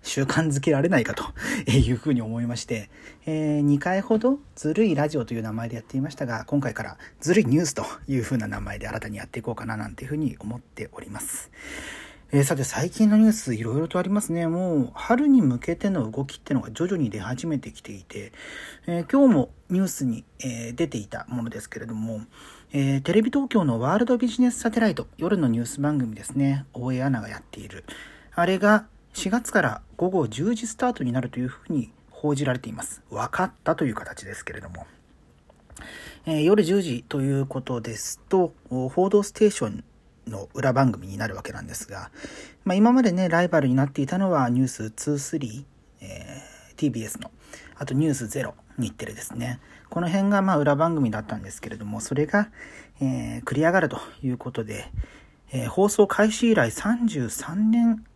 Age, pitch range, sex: 40-59, 120-185 Hz, male